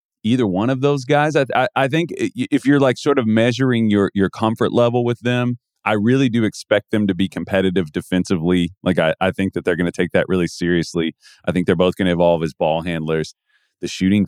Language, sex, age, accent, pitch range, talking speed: English, male, 30-49, American, 85-110 Hz, 225 wpm